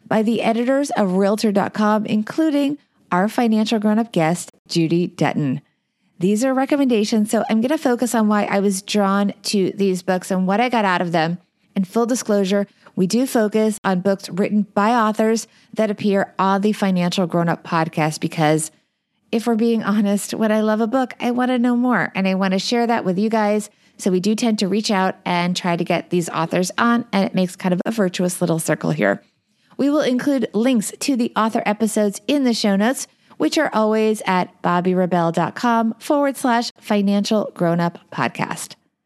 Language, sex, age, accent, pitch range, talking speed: English, female, 30-49, American, 185-235 Hz, 190 wpm